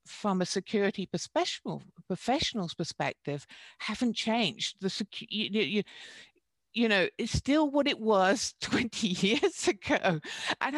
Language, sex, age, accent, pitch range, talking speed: English, female, 60-79, British, 185-235 Hz, 115 wpm